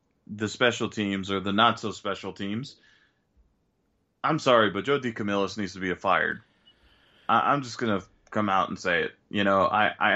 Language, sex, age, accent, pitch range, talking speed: English, male, 20-39, American, 100-115 Hz, 190 wpm